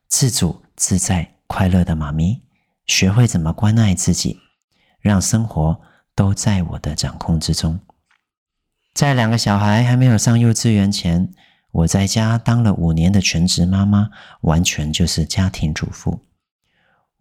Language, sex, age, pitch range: Chinese, male, 40-59, 85-115 Hz